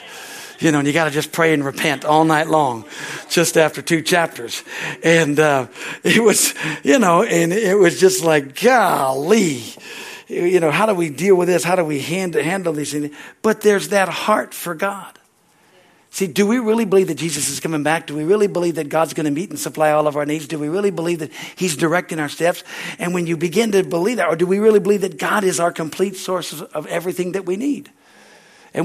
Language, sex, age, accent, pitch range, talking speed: English, male, 60-79, American, 150-195 Hz, 220 wpm